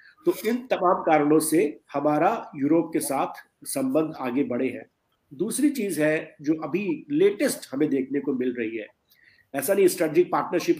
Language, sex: Hindi, male